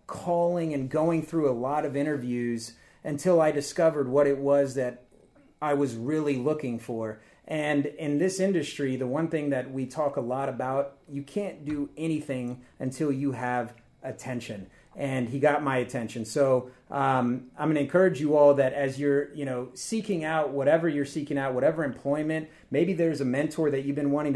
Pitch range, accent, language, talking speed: 125-150 Hz, American, English, 185 wpm